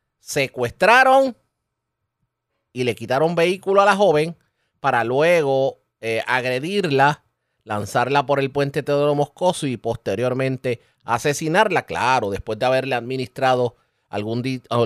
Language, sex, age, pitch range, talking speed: Spanish, male, 30-49, 120-190 Hz, 110 wpm